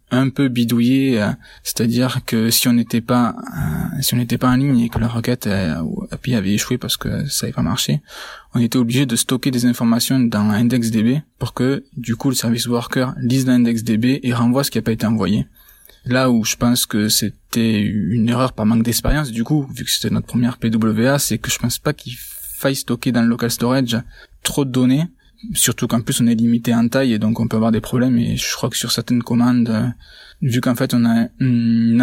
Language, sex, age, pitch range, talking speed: French, male, 20-39, 115-130 Hz, 225 wpm